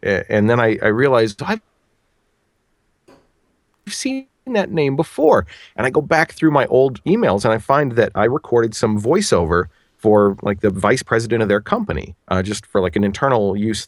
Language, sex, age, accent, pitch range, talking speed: English, male, 40-59, American, 100-150 Hz, 175 wpm